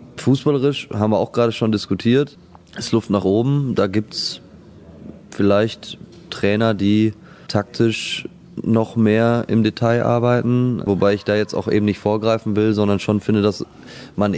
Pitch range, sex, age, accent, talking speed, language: 100-115 Hz, male, 20-39, German, 155 wpm, German